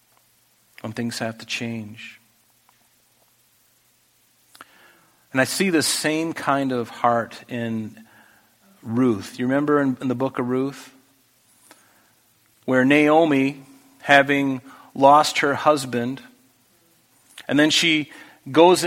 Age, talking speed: 50-69, 105 wpm